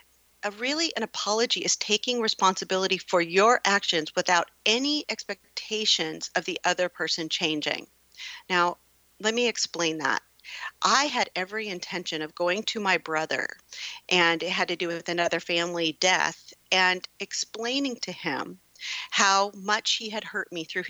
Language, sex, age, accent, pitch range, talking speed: English, female, 40-59, American, 160-210 Hz, 145 wpm